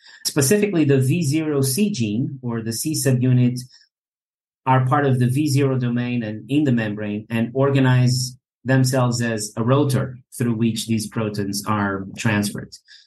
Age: 30-49